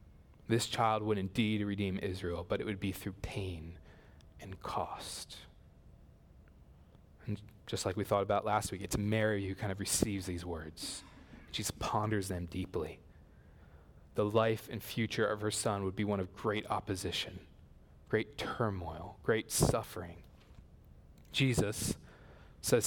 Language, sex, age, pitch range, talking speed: English, male, 20-39, 90-115 Hz, 140 wpm